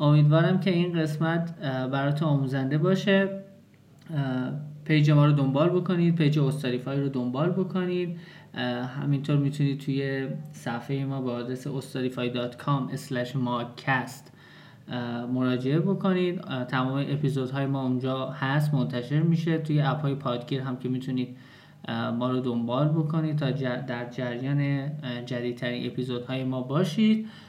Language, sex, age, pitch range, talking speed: Persian, male, 20-39, 130-150 Hz, 115 wpm